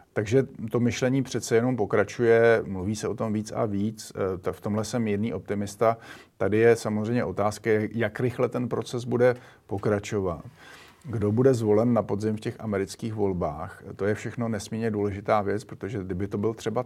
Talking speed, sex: 170 wpm, male